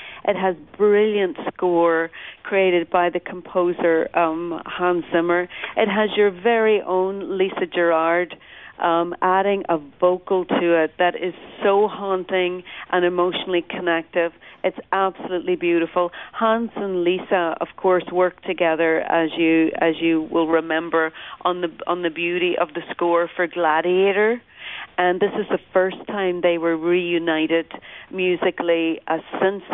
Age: 50-69